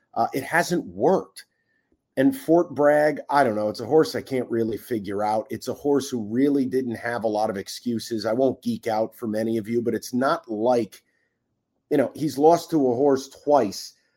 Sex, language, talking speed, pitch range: male, English, 205 wpm, 110-135 Hz